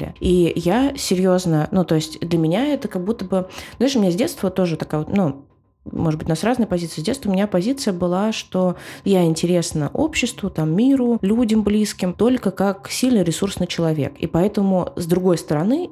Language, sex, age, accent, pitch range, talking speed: Russian, female, 20-39, native, 160-200 Hz, 190 wpm